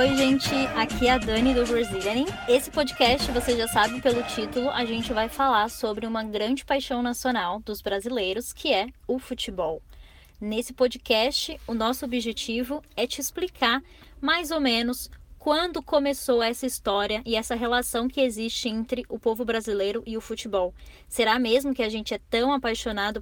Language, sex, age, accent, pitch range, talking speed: Portuguese, female, 10-29, Brazilian, 225-265 Hz, 170 wpm